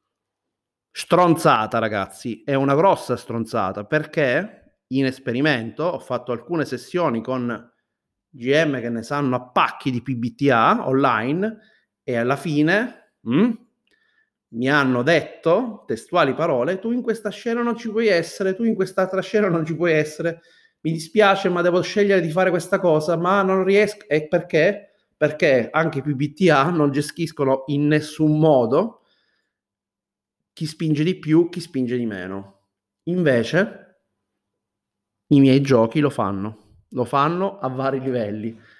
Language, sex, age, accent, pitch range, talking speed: Italian, male, 30-49, native, 125-170 Hz, 140 wpm